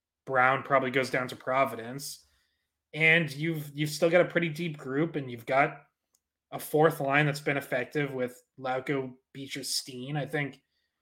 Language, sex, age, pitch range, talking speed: English, male, 20-39, 130-160 Hz, 165 wpm